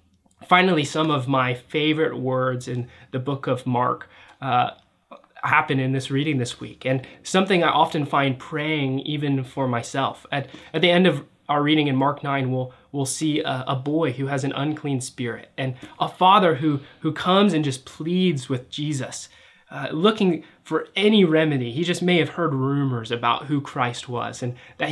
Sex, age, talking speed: male, 20-39, 185 wpm